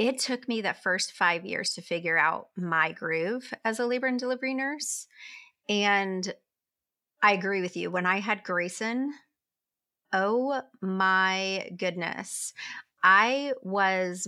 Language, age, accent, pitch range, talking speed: English, 30-49, American, 180-250 Hz, 135 wpm